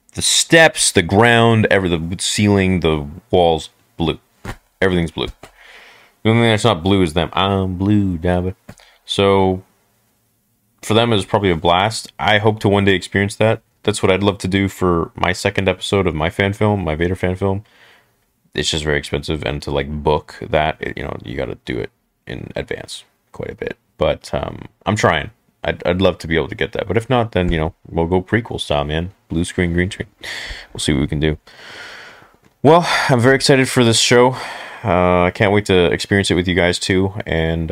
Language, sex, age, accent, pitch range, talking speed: English, male, 30-49, American, 85-105 Hz, 205 wpm